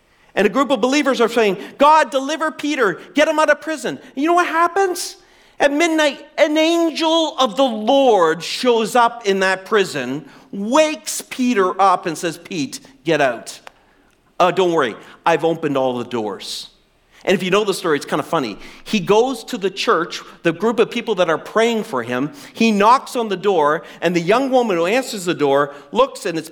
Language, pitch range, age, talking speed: English, 170-275 Hz, 40-59, 195 wpm